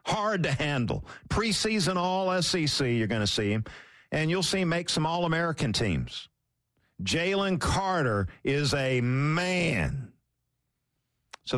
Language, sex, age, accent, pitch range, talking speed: English, male, 50-69, American, 120-165 Hz, 125 wpm